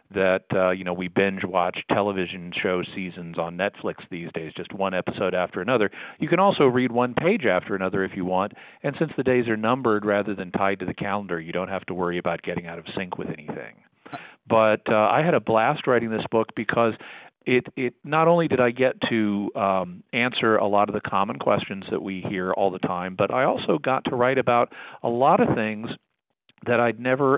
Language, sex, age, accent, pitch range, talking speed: English, male, 40-59, American, 95-125 Hz, 220 wpm